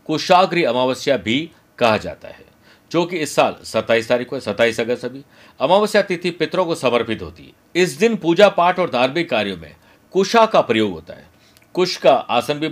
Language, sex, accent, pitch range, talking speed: Hindi, male, native, 125-165 Hz, 190 wpm